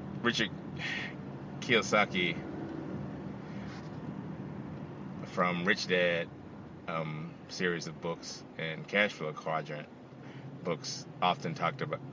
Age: 30-49